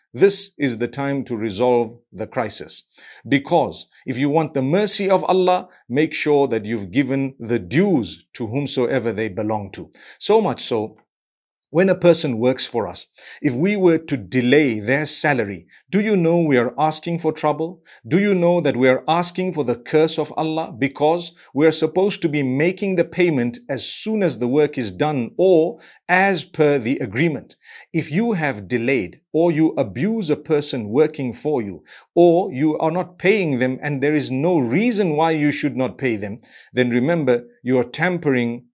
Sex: male